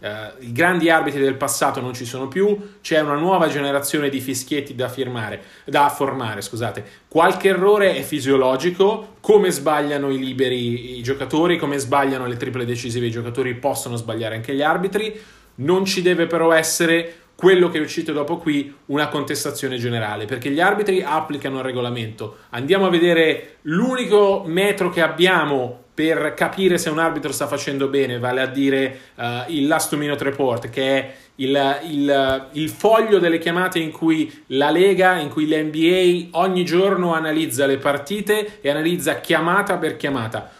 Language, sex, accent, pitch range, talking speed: Italian, male, native, 135-175 Hz, 165 wpm